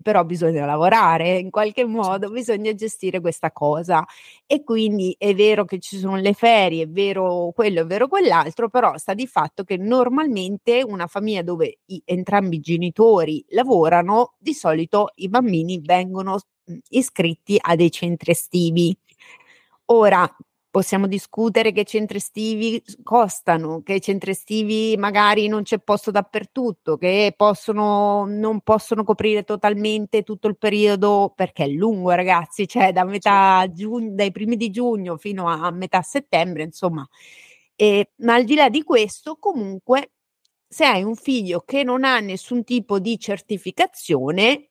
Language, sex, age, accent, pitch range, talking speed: Italian, female, 30-49, native, 185-230 Hz, 150 wpm